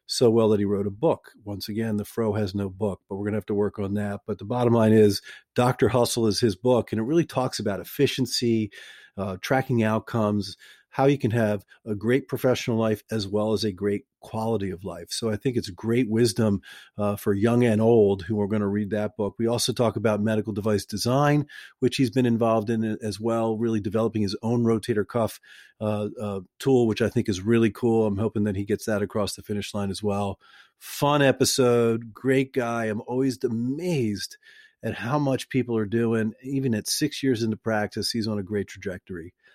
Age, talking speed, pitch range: 40-59, 215 wpm, 105-135 Hz